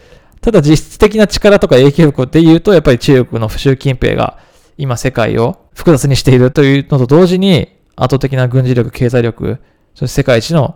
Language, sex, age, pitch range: Japanese, male, 20-39, 125-160 Hz